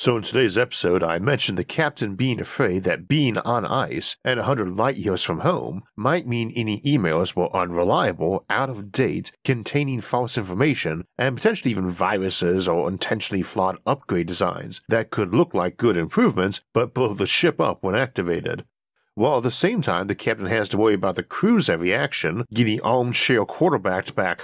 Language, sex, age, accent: English, male, 50-69, American